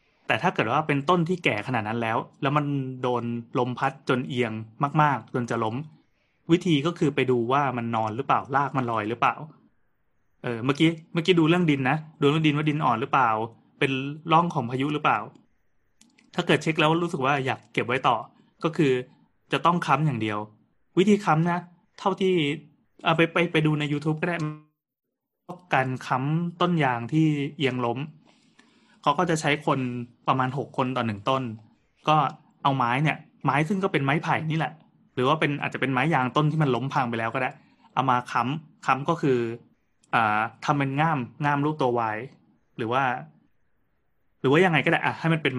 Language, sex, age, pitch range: Thai, male, 20-39, 125-160 Hz